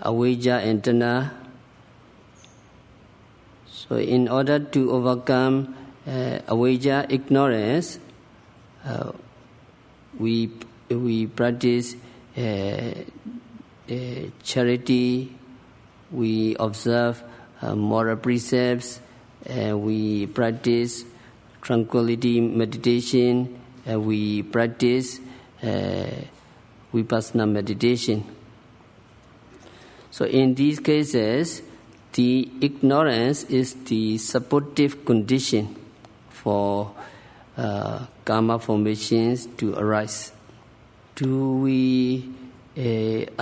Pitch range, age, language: 110-130 Hz, 50-69, English